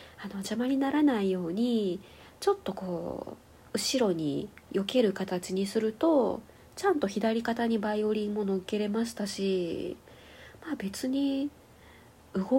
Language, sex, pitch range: Japanese, female, 180-235 Hz